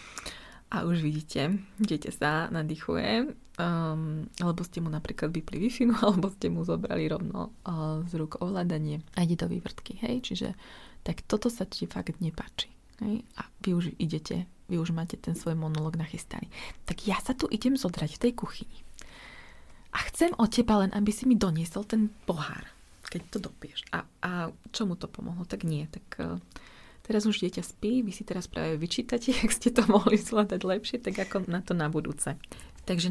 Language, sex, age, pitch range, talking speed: Slovak, female, 20-39, 160-210 Hz, 180 wpm